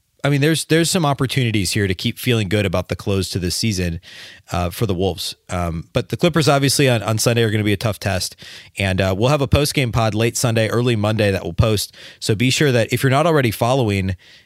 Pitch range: 100-130 Hz